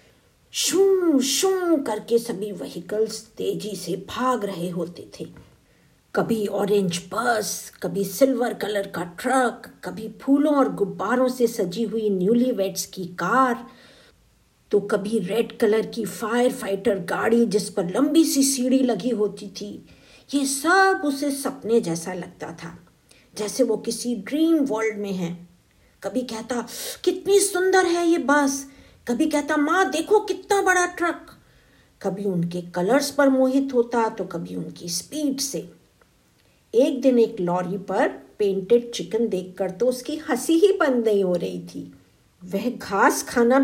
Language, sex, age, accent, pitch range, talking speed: Hindi, female, 50-69, native, 195-275 Hz, 145 wpm